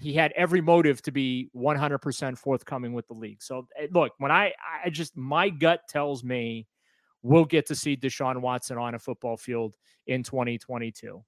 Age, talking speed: 30-49, 175 wpm